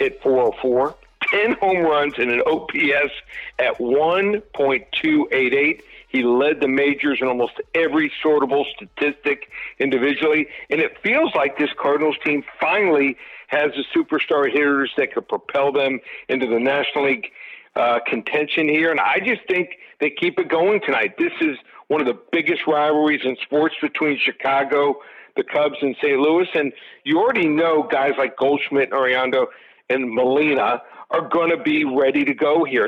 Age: 50-69